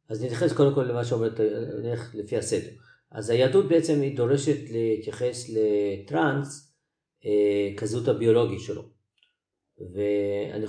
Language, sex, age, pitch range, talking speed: Hebrew, male, 40-59, 105-145 Hz, 105 wpm